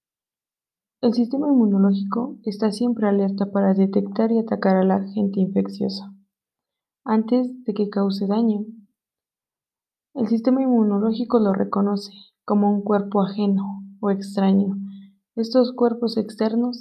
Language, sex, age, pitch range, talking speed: English, female, 20-39, 195-230 Hz, 120 wpm